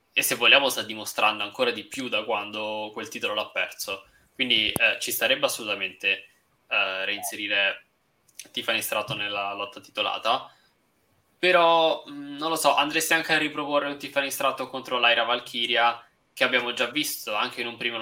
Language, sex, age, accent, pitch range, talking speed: Italian, male, 20-39, native, 115-150 Hz, 160 wpm